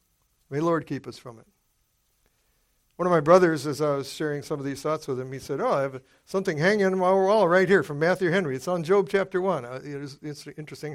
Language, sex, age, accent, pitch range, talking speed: English, male, 60-79, American, 140-190 Hz, 240 wpm